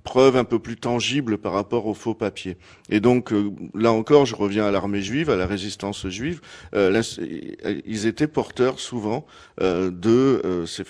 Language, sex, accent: French, male, French